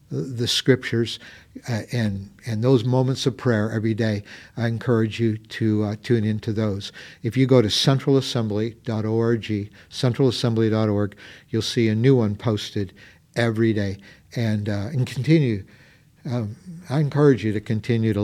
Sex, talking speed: male, 145 wpm